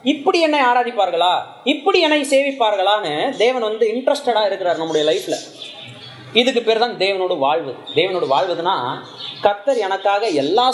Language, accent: Tamil, native